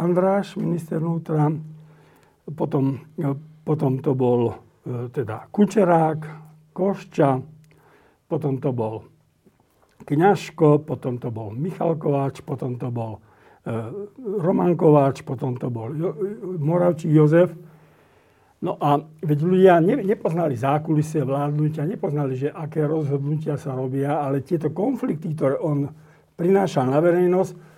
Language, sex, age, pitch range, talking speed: Slovak, male, 60-79, 145-170 Hz, 115 wpm